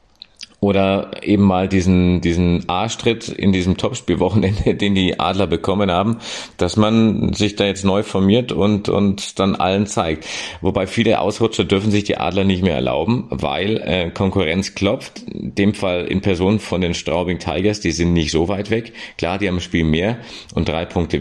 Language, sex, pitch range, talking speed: German, male, 90-110 Hz, 180 wpm